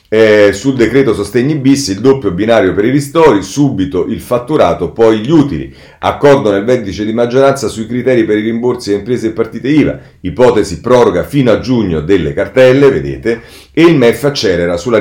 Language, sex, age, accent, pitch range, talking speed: Italian, male, 40-59, native, 95-130 Hz, 180 wpm